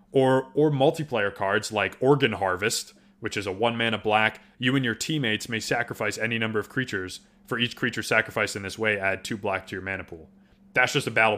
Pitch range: 105-130 Hz